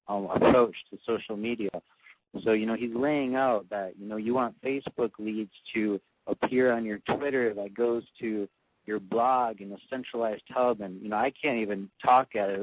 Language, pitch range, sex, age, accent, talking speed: English, 105-120 Hz, male, 40-59, American, 195 wpm